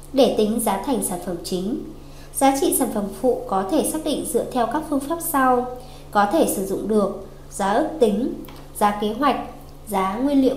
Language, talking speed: Vietnamese, 205 wpm